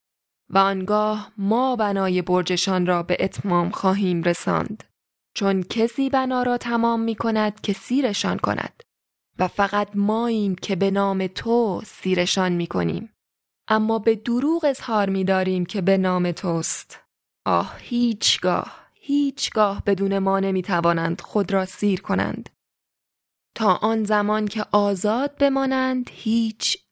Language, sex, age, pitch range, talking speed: Persian, female, 10-29, 195-230 Hz, 130 wpm